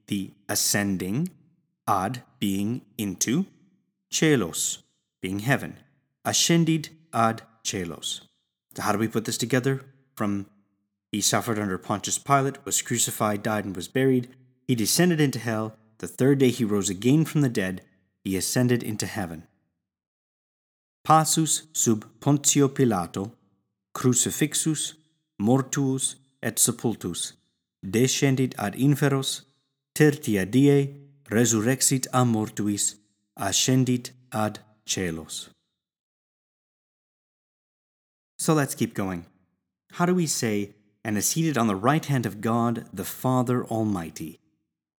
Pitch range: 105-140 Hz